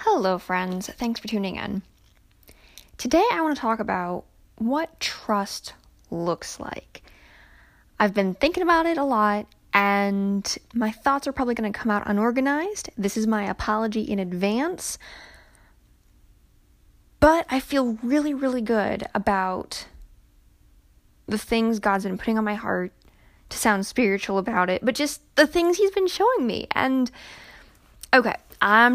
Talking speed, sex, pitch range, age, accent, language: 145 wpm, female, 195-250 Hz, 10-29, American, English